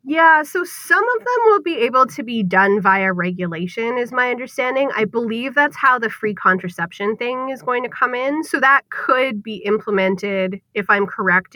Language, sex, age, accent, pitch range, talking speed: English, female, 20-39, American, 185-250 Hz, 190 wpm